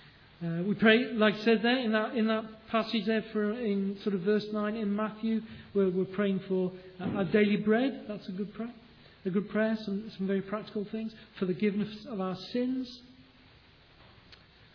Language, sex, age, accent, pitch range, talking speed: English, male, 40-59, British, 190-220 Hz, 185 wpm